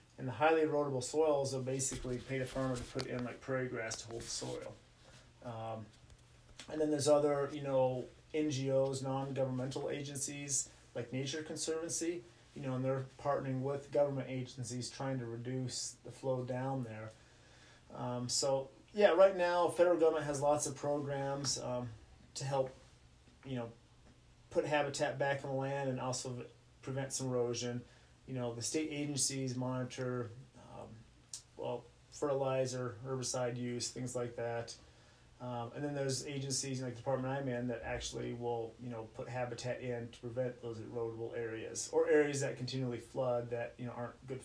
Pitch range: 120-140 Hz